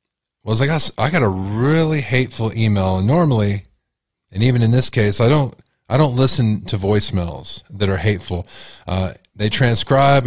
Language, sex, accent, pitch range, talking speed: English, male, American, 100-125 Hz, 165 wpm